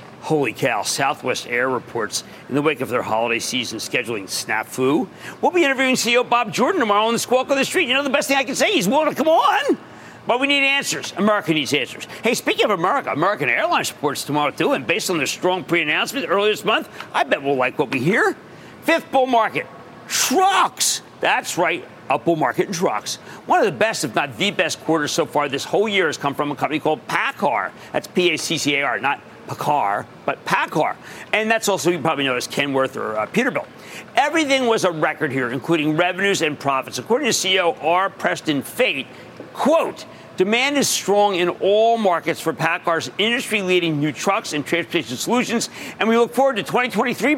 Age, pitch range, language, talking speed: 50-69, 150-245 Hz, English, 200 wpm